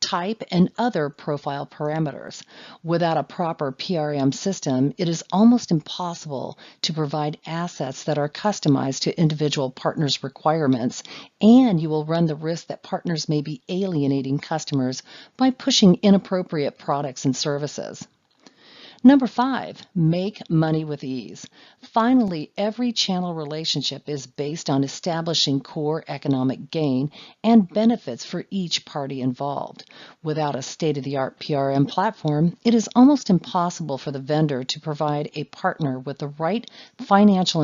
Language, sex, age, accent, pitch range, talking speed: English, female, 50-69, American, 145-190 Hz, 135 wpm